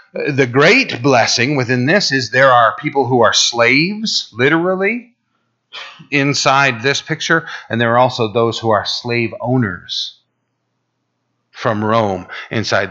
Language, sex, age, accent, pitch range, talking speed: English, male, 40-59, American, 110-135 Hz, 130 wpm